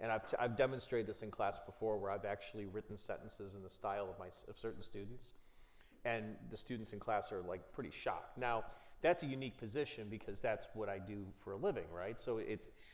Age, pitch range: 30-49, 105-130 Hz